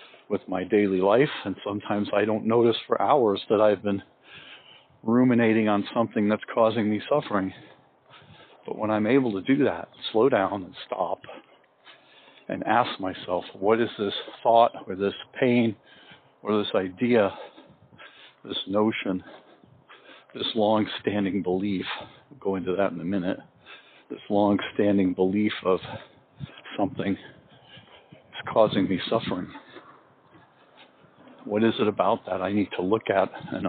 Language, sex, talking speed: English, male, 135 wpm